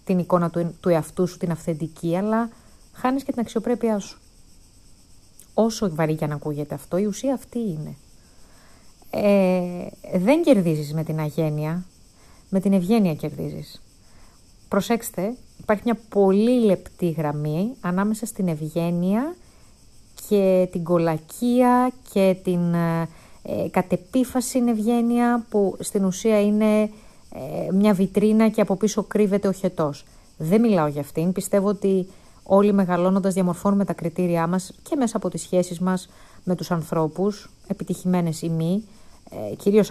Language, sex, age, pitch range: Greek, female, 30-49, 170-215 Hz